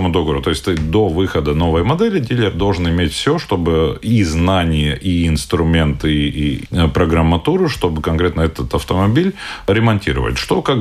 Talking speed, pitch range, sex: 140 wpm, 80-110 Hz, male